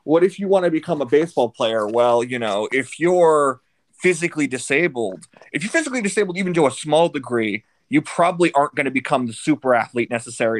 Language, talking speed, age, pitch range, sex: English, 200 wpm, 30-49, 120-160 Hz, male